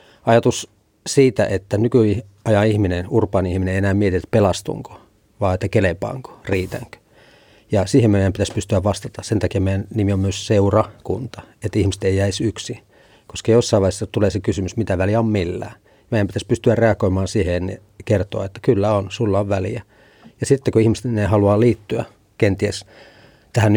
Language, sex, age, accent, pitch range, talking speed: Finnish, male, 40-59, native, 100-115 Hz, 165 wpm